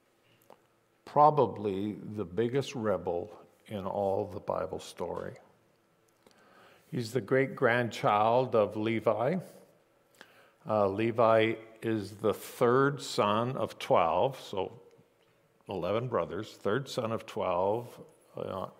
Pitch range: 105-130 Hz